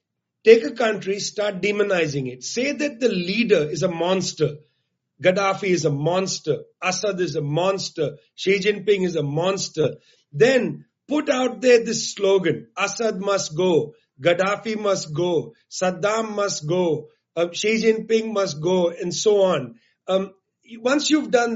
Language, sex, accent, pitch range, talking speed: English, male, Indian, 185-225 Hz, 150 wpm